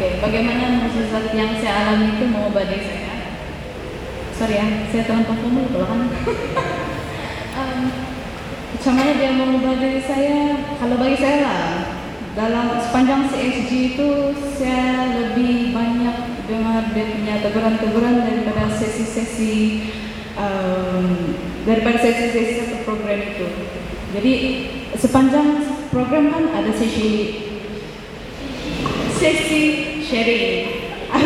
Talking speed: 95 wpm